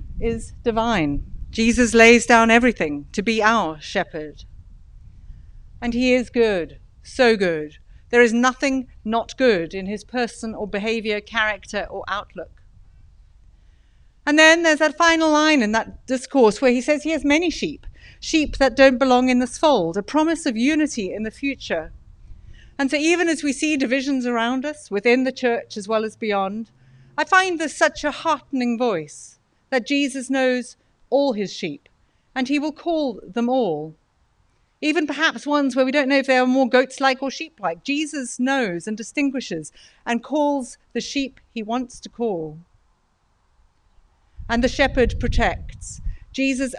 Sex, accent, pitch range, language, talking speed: female, British, 195-270 Hz, English, 160 wpm